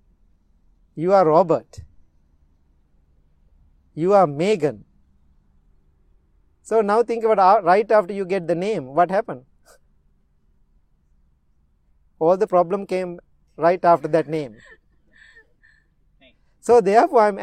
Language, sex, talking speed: English, male, 100 wpm